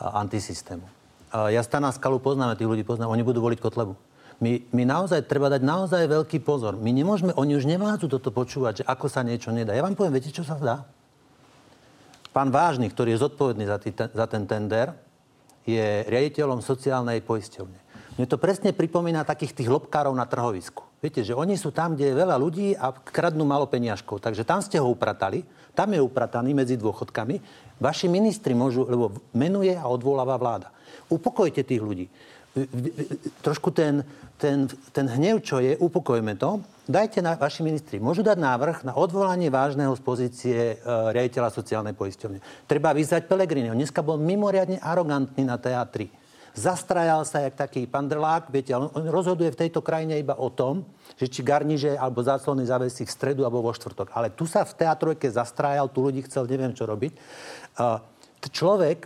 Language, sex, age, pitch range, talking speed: Slovak, male, 50-69, 120-155 Hz, 170 wpm